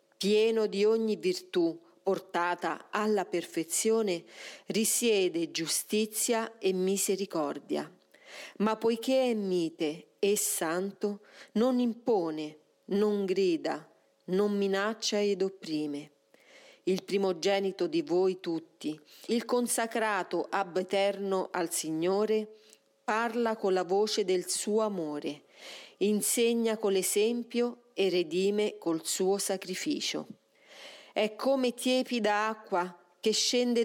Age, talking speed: 40-59, 100 wpm